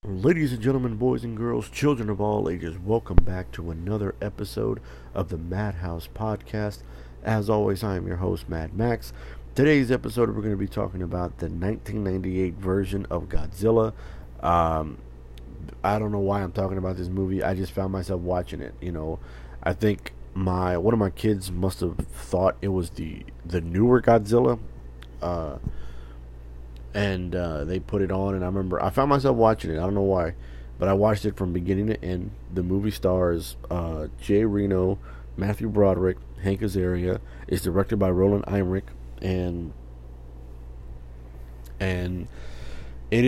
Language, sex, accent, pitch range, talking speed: English, male, American, 80-105 Hz, 165 wpm